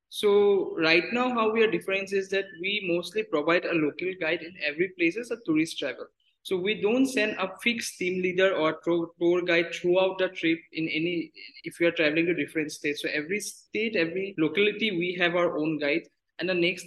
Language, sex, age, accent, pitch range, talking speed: English, male, 20-39, Indian, 165-210 Hz, 205 wpm